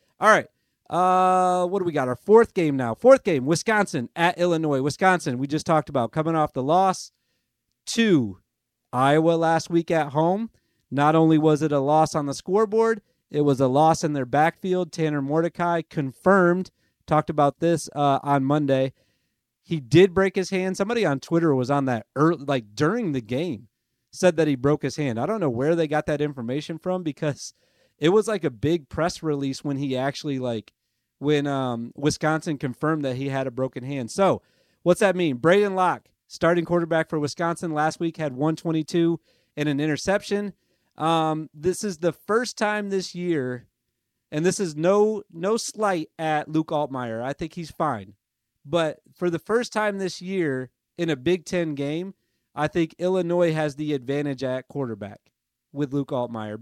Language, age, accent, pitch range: English, 30-49, American, 135-175 Hz